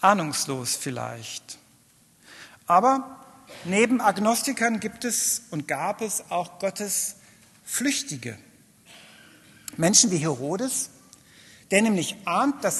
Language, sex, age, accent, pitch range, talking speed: German, male, 60-79, German, 170-240 Hz, 95 wpm